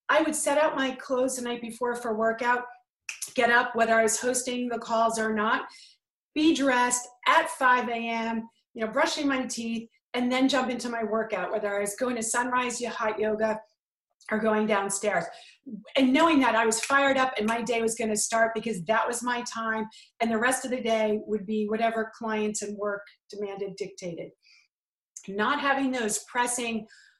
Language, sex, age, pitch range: English, female, 40-59, 220-265 Hz